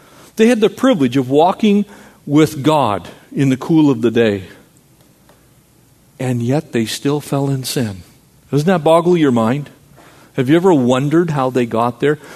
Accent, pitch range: American, 135-185 Hz